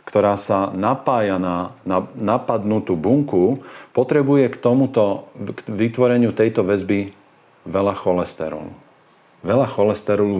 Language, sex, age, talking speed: Slovak, male, 40-59, 100 wpm